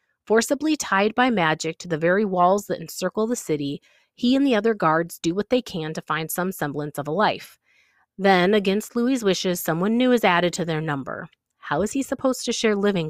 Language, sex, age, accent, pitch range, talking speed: English, female, 30-49, American, 155-225 Hz, 210 wpm